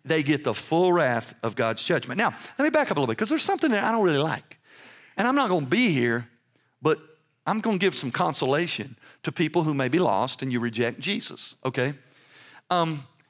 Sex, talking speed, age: male, 225 wpm, 50-69